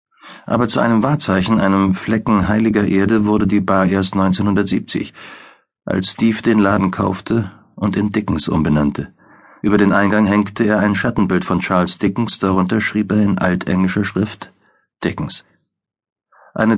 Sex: male